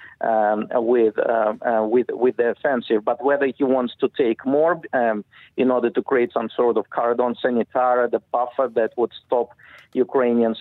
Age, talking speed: 50-69, 175 wpm